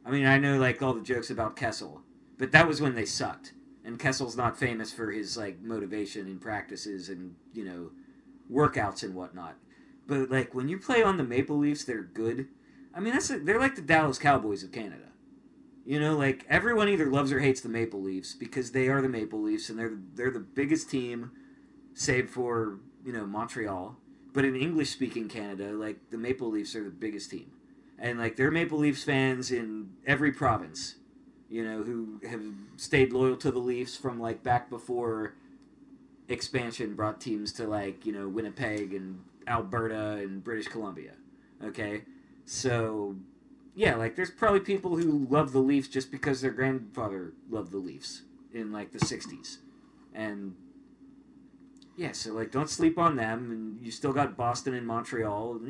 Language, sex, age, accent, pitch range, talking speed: English, male, 30-49, American, 110-160 Hz, 180 wpm